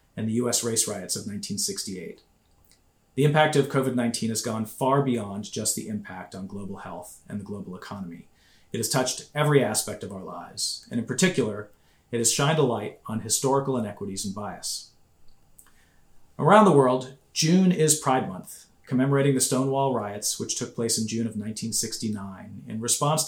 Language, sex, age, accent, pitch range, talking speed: English, male, 40-59, American, 110-135 Hz, 170 wpm